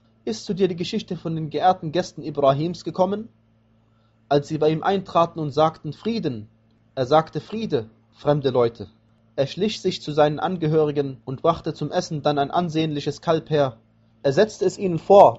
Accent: German